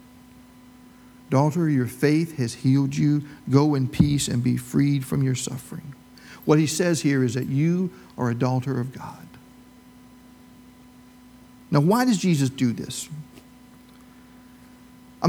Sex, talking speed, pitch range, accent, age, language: male, 135 wpm, 135-215 Hz, American, 50-69, English